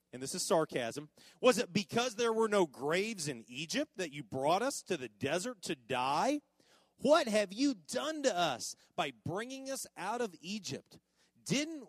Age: 40-59